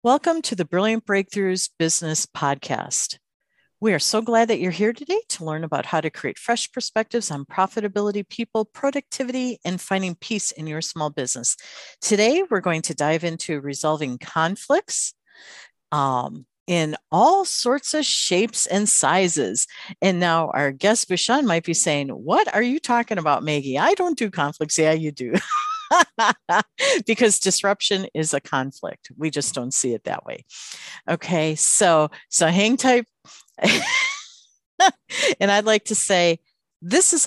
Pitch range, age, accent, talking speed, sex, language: 165-245 Hz, 50-69, American, 155 wpm, female, English